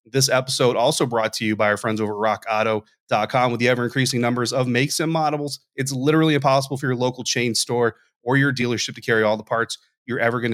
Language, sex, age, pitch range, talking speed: English, male, 30-49, 115-140 Hz, 220 wpm